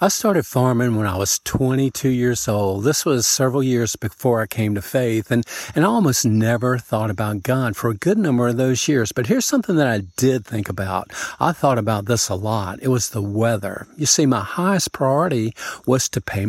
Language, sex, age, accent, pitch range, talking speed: English, male, 50-69, American, 110-150 Hz, 215 wpm